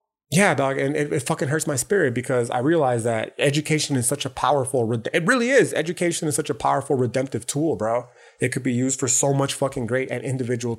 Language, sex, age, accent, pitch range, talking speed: English, male, 30-49, American, 125-150 Hz, 220 wpm